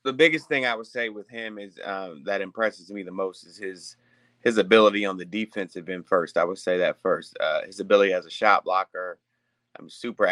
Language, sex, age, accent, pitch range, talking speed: English, male, 30-49, American, 100-120 Hz, 220 wpm